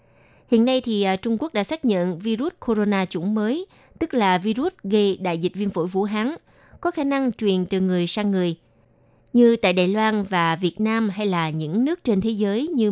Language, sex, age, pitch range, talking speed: Vietnamese, female, 20-39, 180-235 Hz, 210 wpm